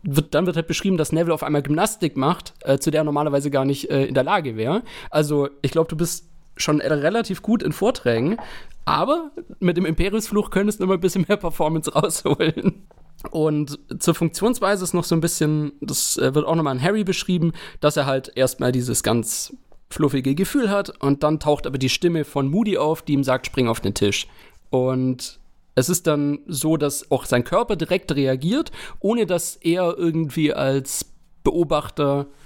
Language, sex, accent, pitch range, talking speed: German, male, German, 140-180 Hz, 195 wpm